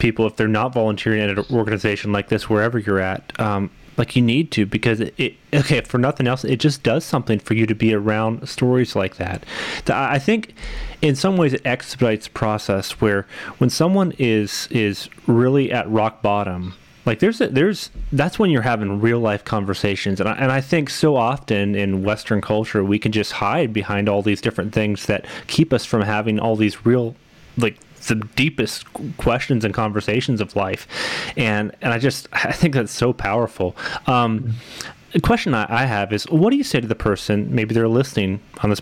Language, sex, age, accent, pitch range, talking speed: English, male, 30-49, American, 105-130 Hz, 200 wpm